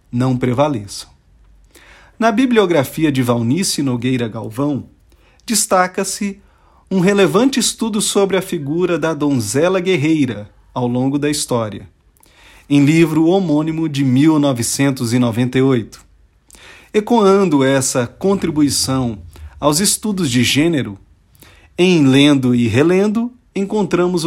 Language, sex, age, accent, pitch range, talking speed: Portuguese, male, 40-59, Brazilian, 125-175 Hz, 95 wpm